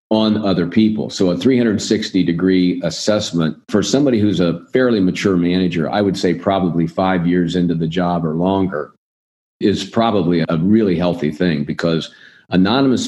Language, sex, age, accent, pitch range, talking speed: English, male, 50-69, American, 85-100 Hz, 155 wpm